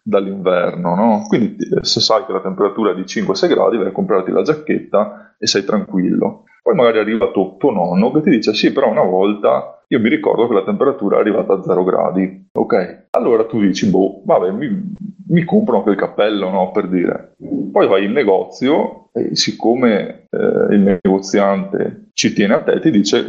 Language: Italian